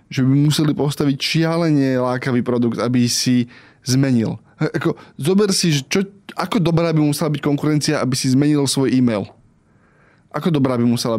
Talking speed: 155 wpm